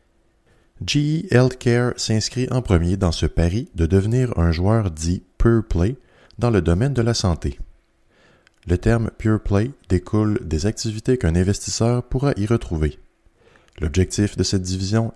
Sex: male